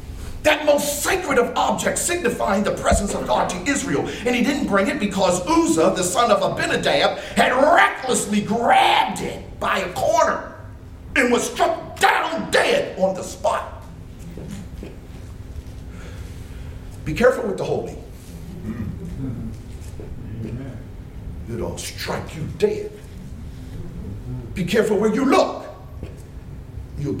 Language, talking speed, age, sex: English, 120 wpm, 50-69, male